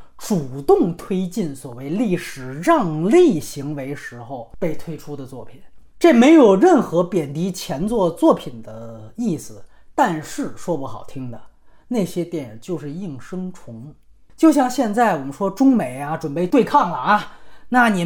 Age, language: 30-49, Chinese